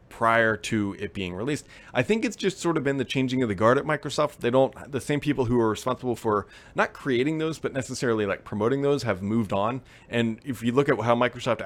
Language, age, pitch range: English, 30-49, 110-150 Hz